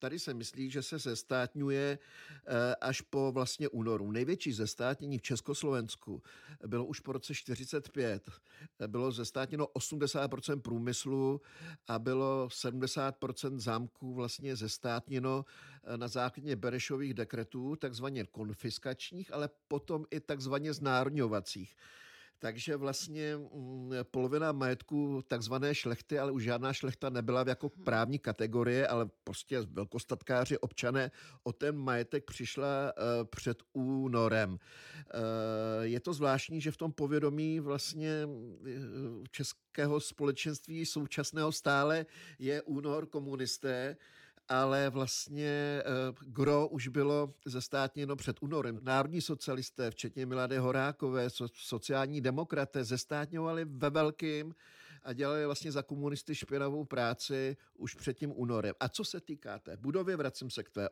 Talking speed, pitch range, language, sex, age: 115 wpm, 125-145 Hz, Czech, male, 50-69